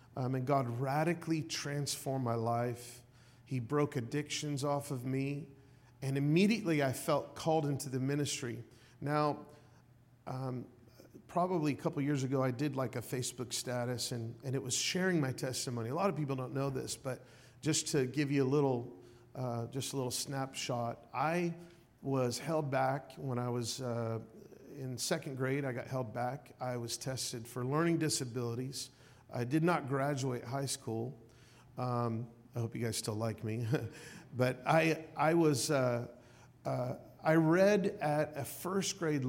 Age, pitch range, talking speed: 40-59, 120-145 Hz, 160 wpm